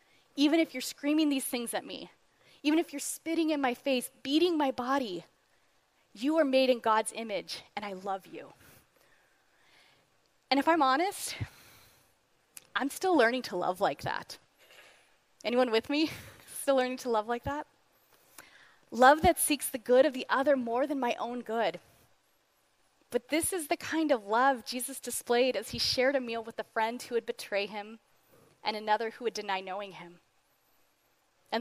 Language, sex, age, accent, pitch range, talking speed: English, female, 20-39, American, 215-285 Hz, 170 wpm